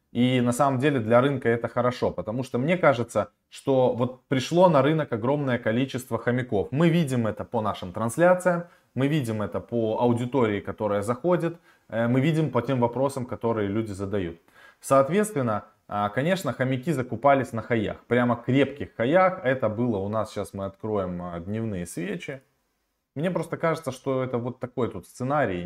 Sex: male